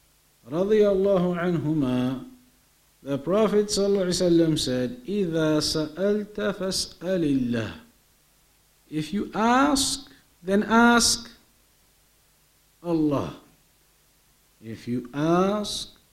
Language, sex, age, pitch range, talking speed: English, male, 50-69, 165-225 Hz, 50 wpm